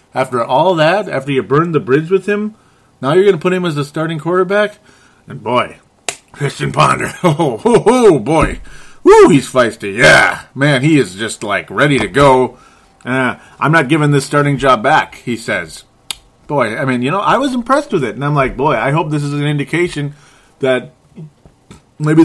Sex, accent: male, American